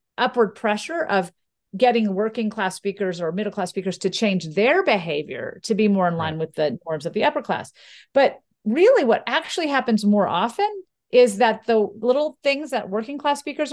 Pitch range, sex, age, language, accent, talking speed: 200-275 Hz, female, 40-59, English, American, 190 wpm